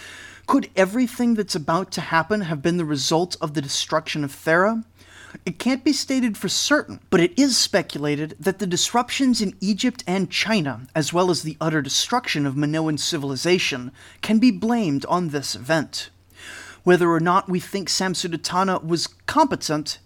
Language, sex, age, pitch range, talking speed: English, male, 30-49, 150-215 Hz, 165 wpm